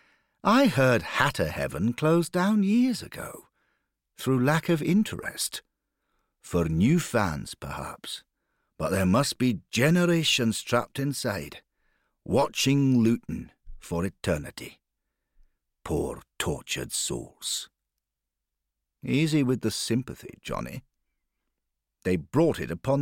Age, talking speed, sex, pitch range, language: 60-79, 100 wpm, male, 90-140 Hz, English